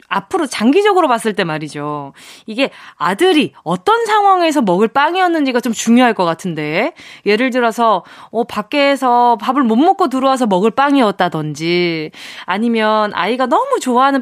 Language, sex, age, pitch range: Korean, female, 20-39, 205-300 Hz